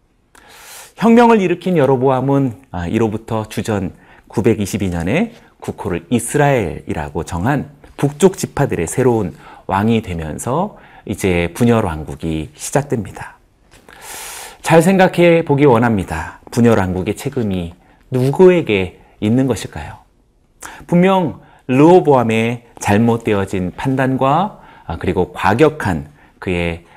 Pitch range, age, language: 100-150 Hz, 40-59, Korean